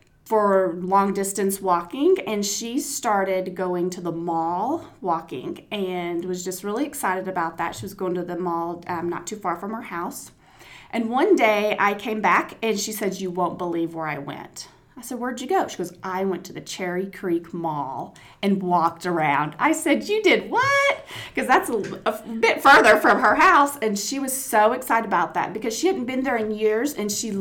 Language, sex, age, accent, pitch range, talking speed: English, female, 30-49, American, 180-220 Hz, 205 wpm